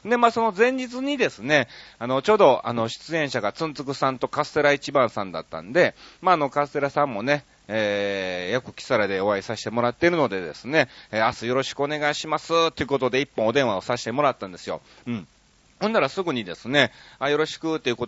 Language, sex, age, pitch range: Japanese, male, 40-59, 110-150 Hz